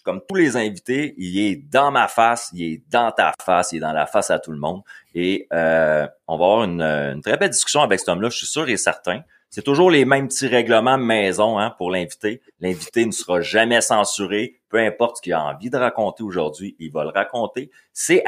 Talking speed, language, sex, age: 230 wpm, French, male, 30-49